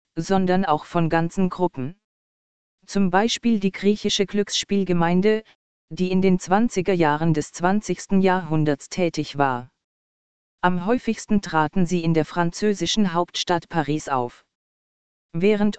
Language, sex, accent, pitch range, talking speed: German, female, German, 160-195 Hz, 120 wpm